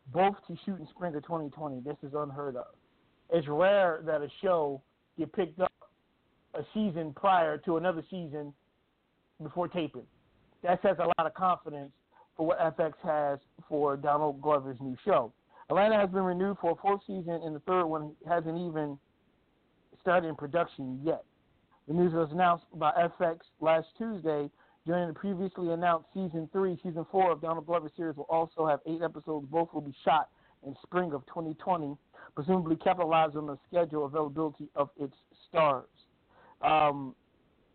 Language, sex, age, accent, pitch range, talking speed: English, male, 40-59, American, 150-175 Hz, 165 wpm